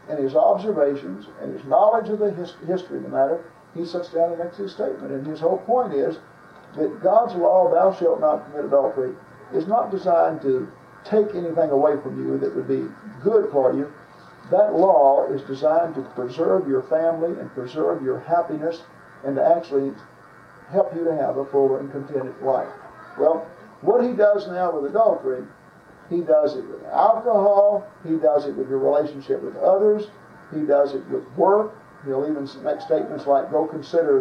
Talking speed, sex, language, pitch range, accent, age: 180 wpm, male, English, 140-205 Hz, American, 50-69